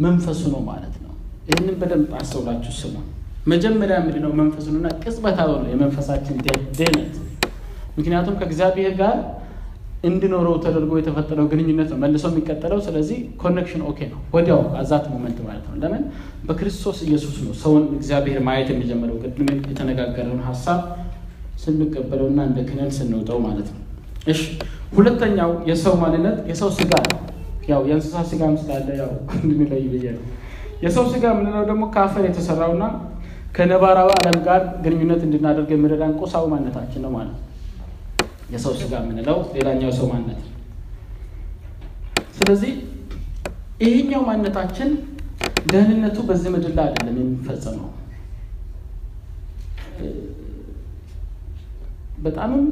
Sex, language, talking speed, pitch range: male, Amharic, 80 wpm, 125-180 Hz